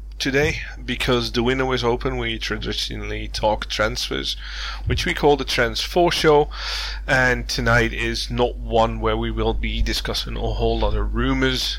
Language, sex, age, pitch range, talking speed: English, male, 20-39, 105-125 Hz, 160 wpm